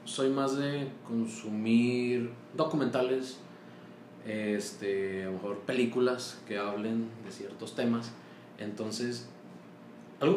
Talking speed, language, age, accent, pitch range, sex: 95 wpm, Spanish, 20-39, Mexican, 95-120 Hz, male